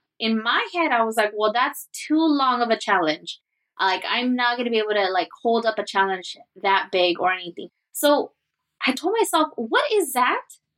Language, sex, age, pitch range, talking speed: English, female, 20-39, 225-285 Hz, 205 wpm